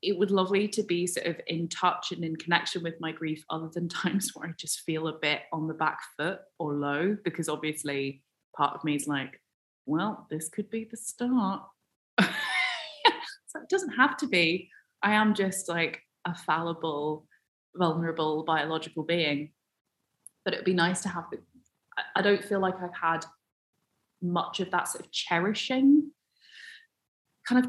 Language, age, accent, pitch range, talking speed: English, 20-39, British, 155-220 Hz, 170 wpm